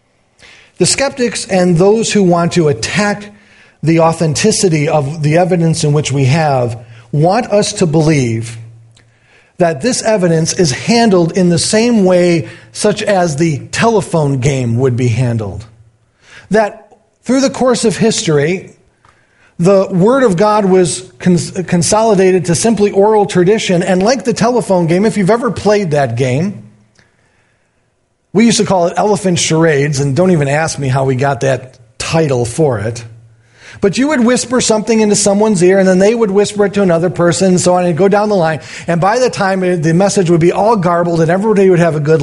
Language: English